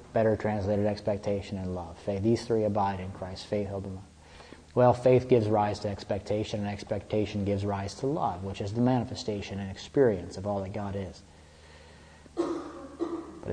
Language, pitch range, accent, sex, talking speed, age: English, 100-130 Hz, American, male, 175 wpm, 30-49